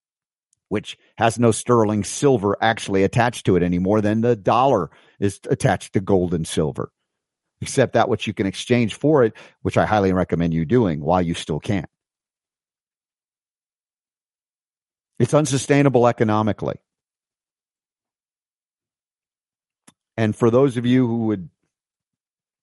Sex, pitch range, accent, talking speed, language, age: male, 100-125 Hz, American, 125 wpm, English, 50-69